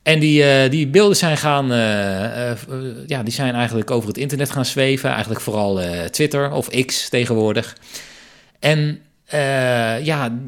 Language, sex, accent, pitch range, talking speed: Dutch, male, Dutch, 115-150 Hz, 160 wpm